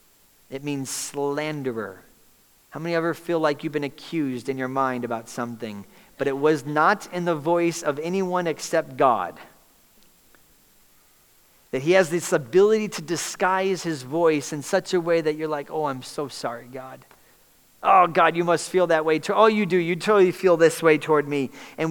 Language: English